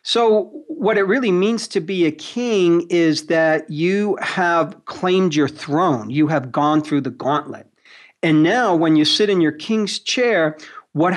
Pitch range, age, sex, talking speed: 150-195 Hz, 40-59, male, 170 wpm